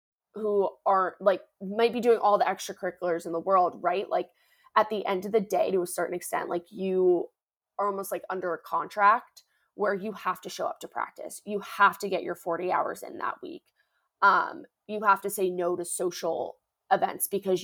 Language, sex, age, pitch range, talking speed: English, female, 20-39, 180-215 Hz, 205 wpm